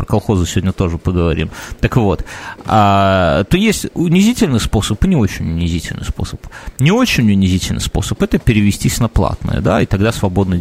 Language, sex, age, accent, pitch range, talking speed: Russian, male, 30-49, native, 95-120 Hz, 165 wpm